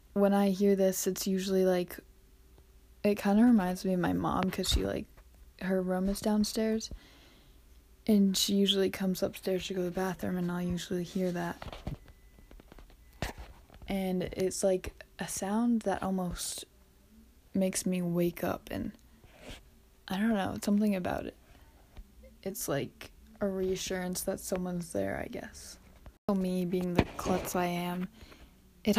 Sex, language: female, English